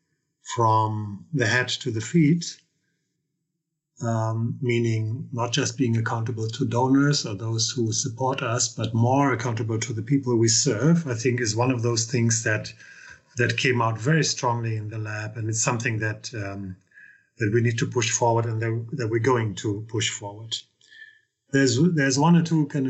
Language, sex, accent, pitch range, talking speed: English, male, German, 115-145 Hz, 175 wpm